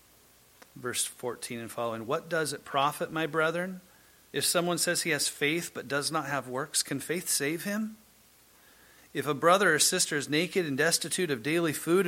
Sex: male